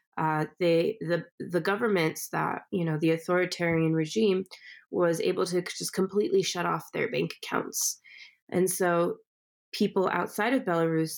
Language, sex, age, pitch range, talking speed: English, female, 20-39, 160-195 Hz, 145 wpm